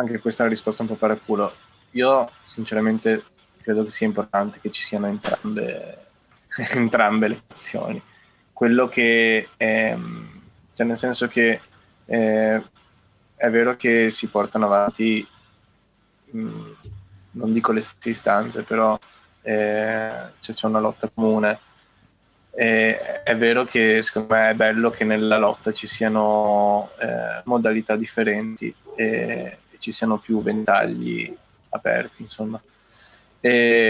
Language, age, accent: Italian, 20-39, native